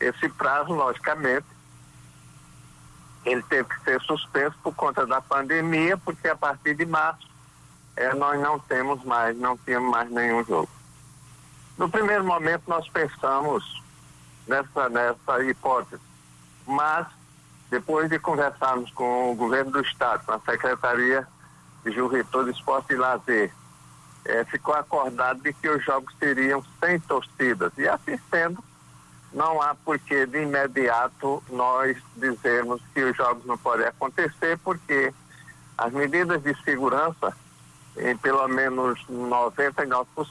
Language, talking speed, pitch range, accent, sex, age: Portuguese, 130 wpm, 125-150 Hz, Brazilian, male, 60-79